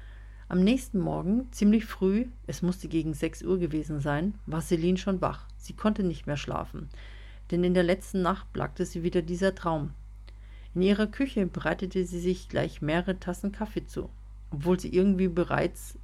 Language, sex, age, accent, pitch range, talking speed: German, female, 50-69, German, 160-205 Hz, 170 wpm